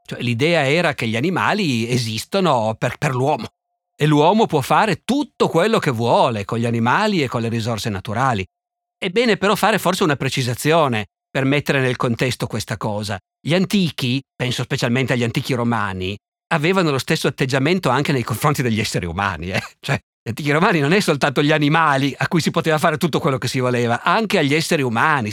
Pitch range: 125-160 Hz